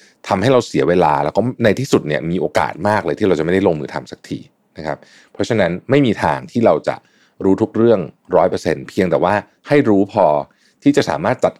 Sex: male